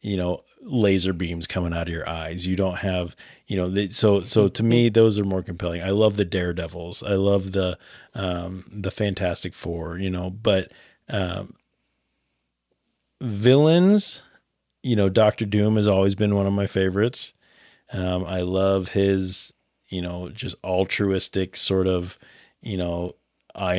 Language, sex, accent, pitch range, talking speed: English, male, American, 90-105 Hz, 155 wpm